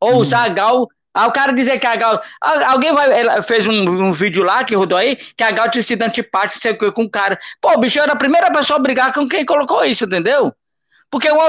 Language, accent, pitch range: Portuguese, Brazilian, 205-275 Hz